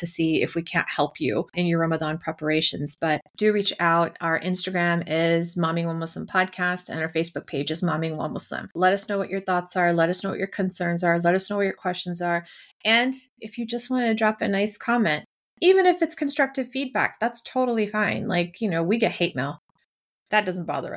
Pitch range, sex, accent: 170-200 Hz, female, American